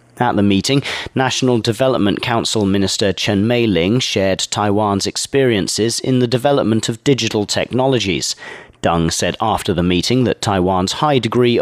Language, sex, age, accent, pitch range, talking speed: English, male, 40-59, British, 95-125 Hz, 140 wpm